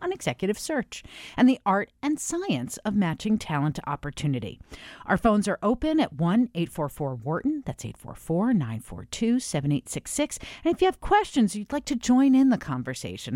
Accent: American